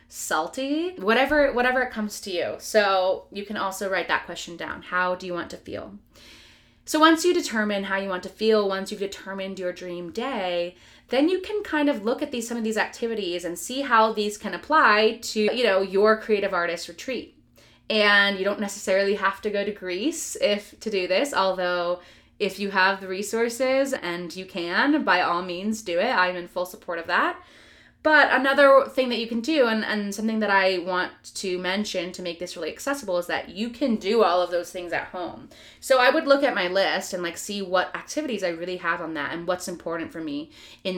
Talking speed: 215 wpm